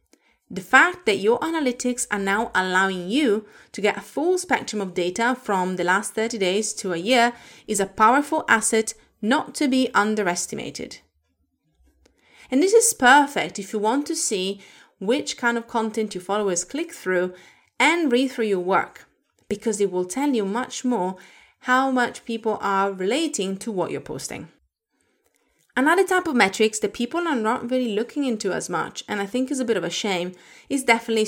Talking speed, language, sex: 180 wpm, English, female